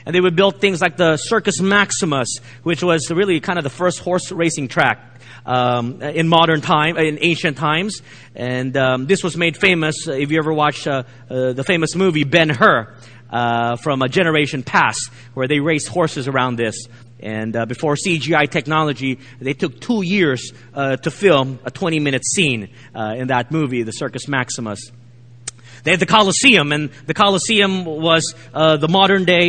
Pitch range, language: 130-195 Hz, English